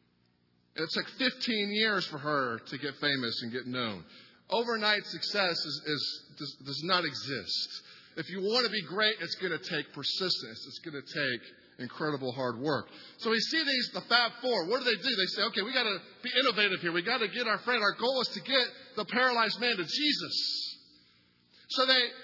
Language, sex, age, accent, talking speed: English, male, 50-69, American, 200 wpm